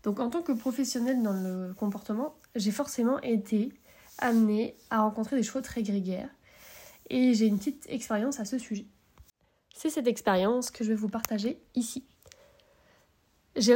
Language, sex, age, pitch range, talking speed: French, female, 20-39, 210-250 Hz, 155 wpm